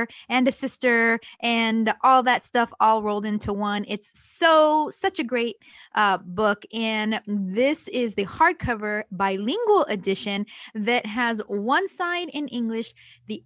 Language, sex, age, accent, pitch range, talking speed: English, female, 20-39, American, 220-295 Hz, 145 wpm